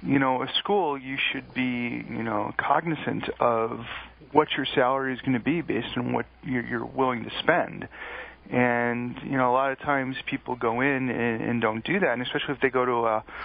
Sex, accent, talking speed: male, American, 205 wpm